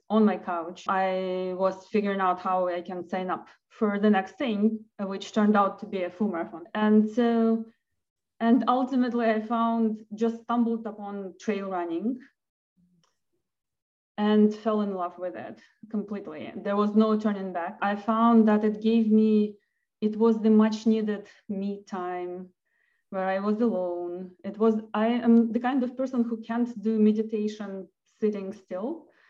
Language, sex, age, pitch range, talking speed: English, female, 20-39, 190-225 Hz, 160 wpm